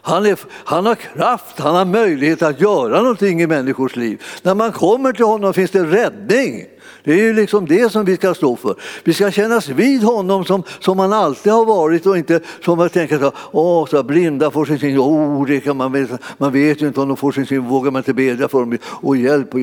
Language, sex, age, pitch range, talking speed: Swedish, male, 60-79, 135-165 Hz, 240 wpm